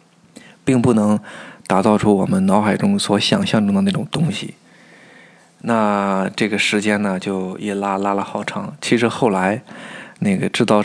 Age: 20-39